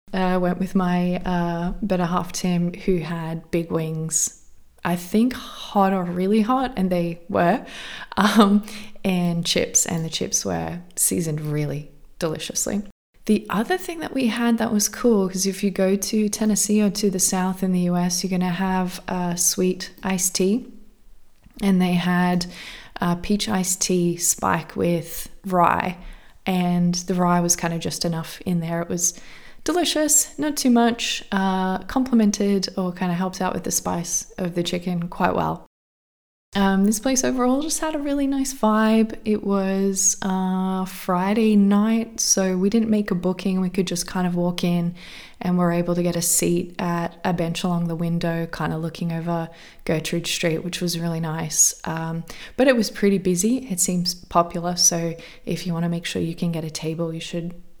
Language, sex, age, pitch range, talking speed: English, female, 20-39, 175-205 Hz, 185 wpm